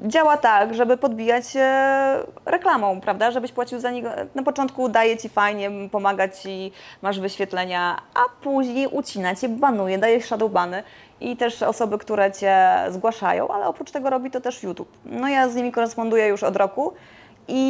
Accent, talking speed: native, 165 wpm